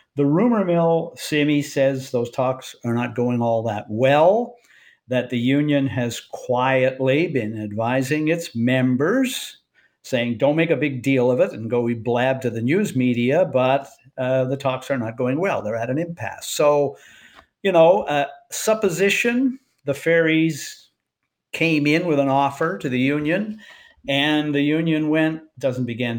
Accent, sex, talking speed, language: American, male, 160 wpm, English